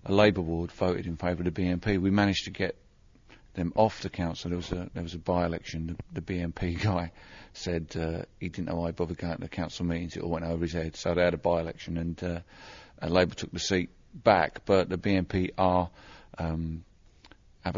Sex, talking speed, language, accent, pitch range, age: male, 225 wpm, English, British, 85-95 Hz, 50-69